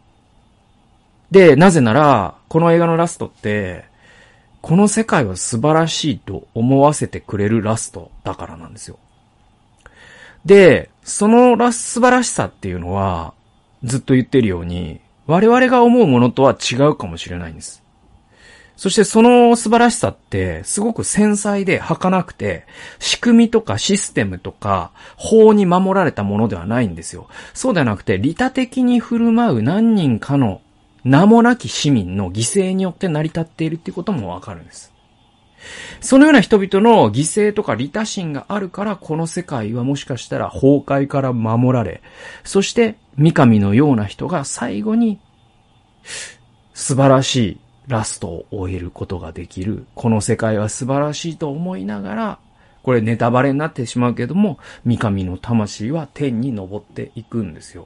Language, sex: Japanese, male